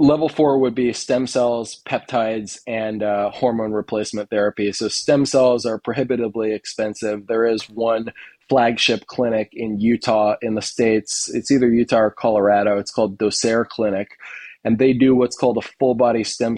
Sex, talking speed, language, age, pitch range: male, 165 wpm, English, 20-39, 105-125 Hz